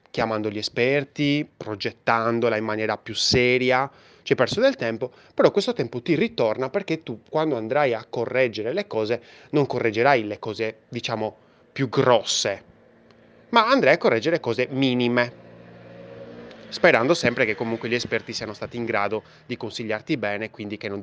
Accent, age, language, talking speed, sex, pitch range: native, 20-39, Italian, 155 wpm, male, 110-160 Hz